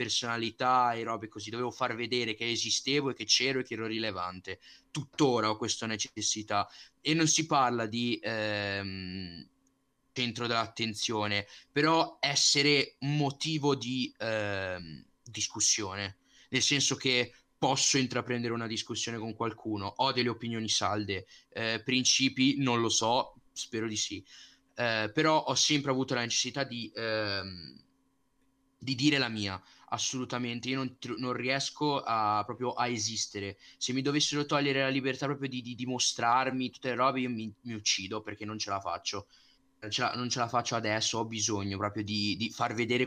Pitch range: 110-135 Hz